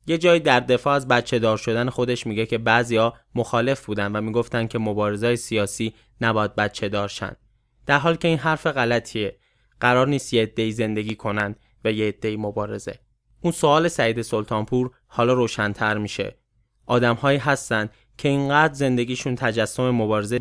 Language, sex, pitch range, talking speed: English, male, 105-125 Hz, 150 wpm